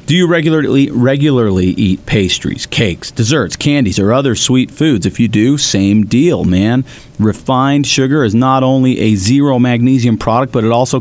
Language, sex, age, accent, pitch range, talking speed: English, male, 40-59, American, 100-130 Hz, 165 wpm